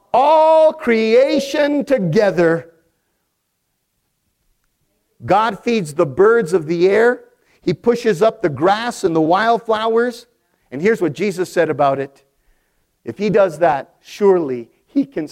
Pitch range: 180-245 Hz